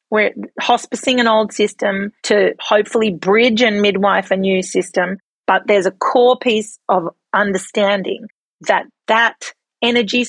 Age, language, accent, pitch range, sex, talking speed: 40-59, English, Australian, 190-220 Hz, female, 135 wpm